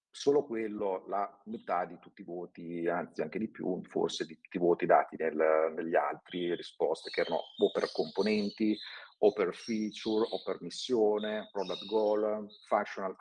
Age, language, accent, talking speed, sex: 50-69, Italian, native, 160 wpm, male